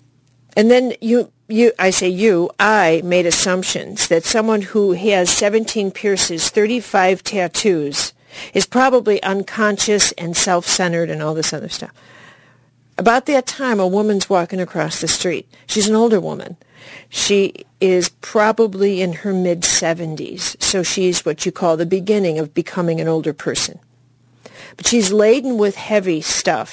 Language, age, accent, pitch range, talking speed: English, 50-69, American, 165-215 Hz, 145 wpm